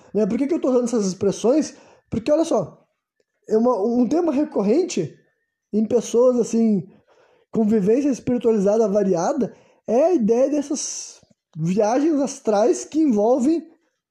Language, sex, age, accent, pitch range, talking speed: Portuguese, male, 20-39, Brazilian, 210-265 Hz, 130 wpm